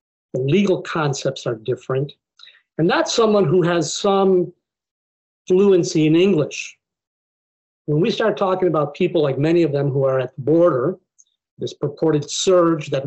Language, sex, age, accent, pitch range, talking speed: English, male, 50-69, American, 140-185 Hz, 150 wpm